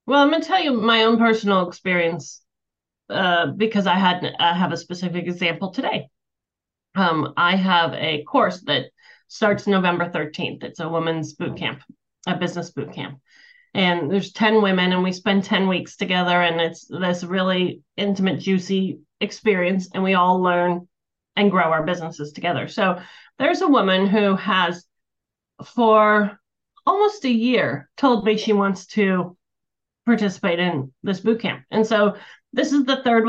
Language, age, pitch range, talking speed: English, 30-49, 175-225 Hz, 160 wpm